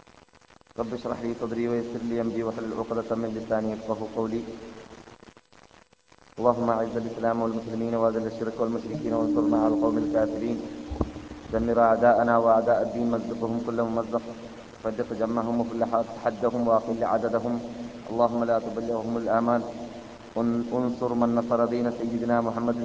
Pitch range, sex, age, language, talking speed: 115-120 Hz, male, 20-39, Malayalam, 125 wpm